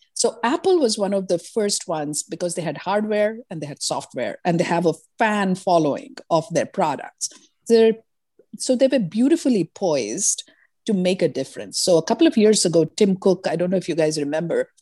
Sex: female